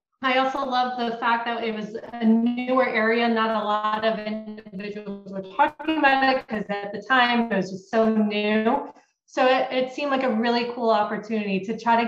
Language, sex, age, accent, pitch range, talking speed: English, female, 30-49, American, 210-240 Hz, 205 wpm